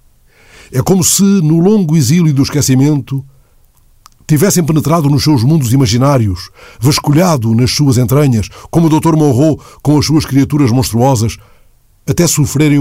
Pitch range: 110-145 Hz